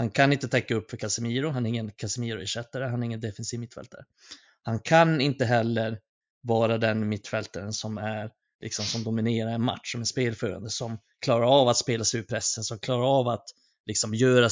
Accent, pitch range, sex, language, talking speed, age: native, 110-130 Hz, male, Swedish, 195 wpm, 30-49